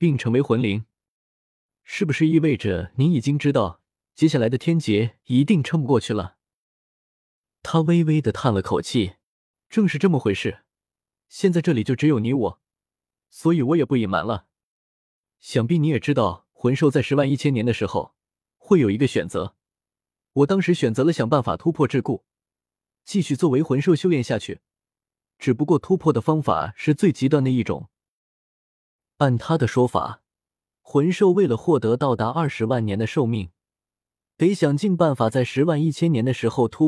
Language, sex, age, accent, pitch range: Chinese, male, 20-39, native, 115-165 Hz